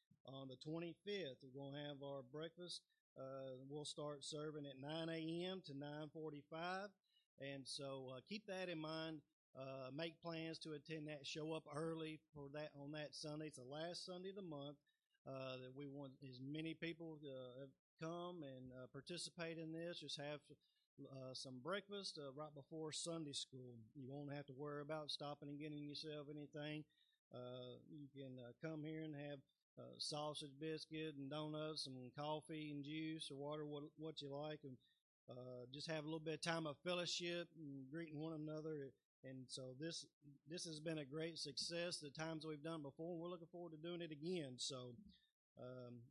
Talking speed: 185 wpm